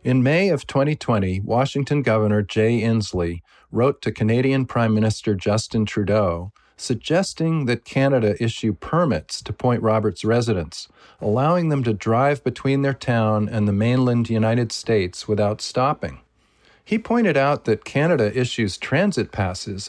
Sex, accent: male, American